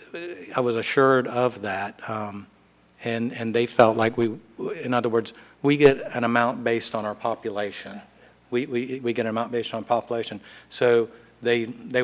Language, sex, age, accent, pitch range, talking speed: English, male, 50-69, American, 110-120 Hz, 175 wpm